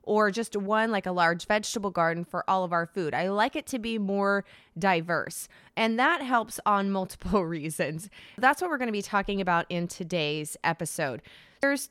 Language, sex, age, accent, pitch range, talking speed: English, female, 20-39, American, 180-240 Hz, 190 wpm